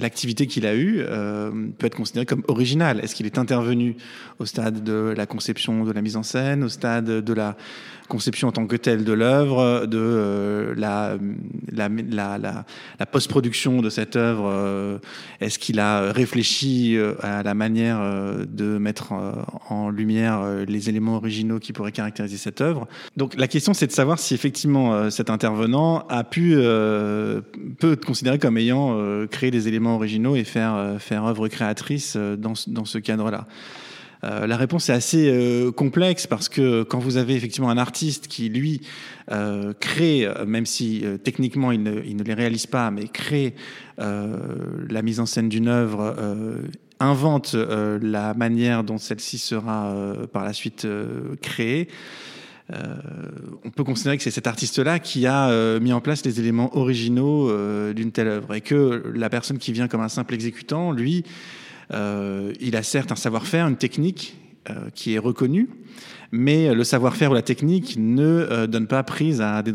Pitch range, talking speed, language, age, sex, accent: 110-130 Hz, 175 wpm, French, 20-39, male, French